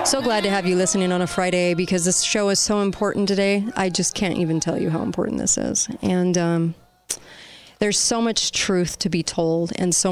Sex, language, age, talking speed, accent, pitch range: female, English, 30-49, 220 wpm, American, 175-200 Hz